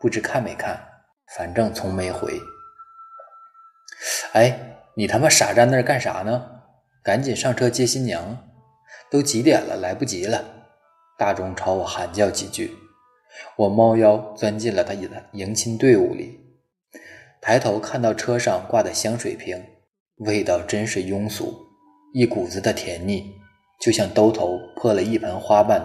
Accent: native